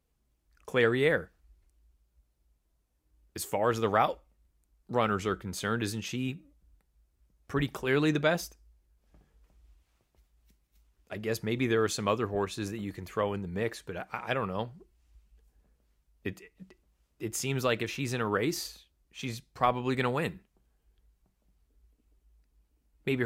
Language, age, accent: English, 30-49, American